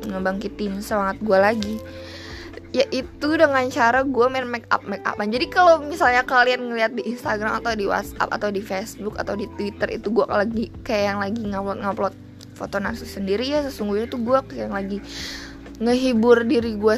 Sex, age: female, 20-39